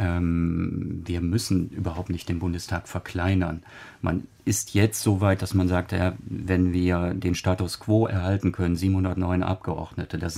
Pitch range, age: 90-105 Hz, 50-69